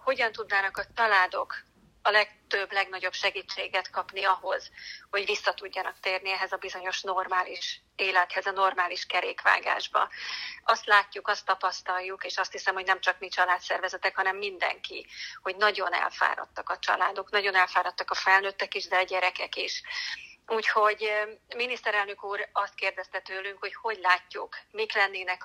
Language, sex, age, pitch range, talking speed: Hungarian, female, 30-49, 185-210 Hz, 140 wpm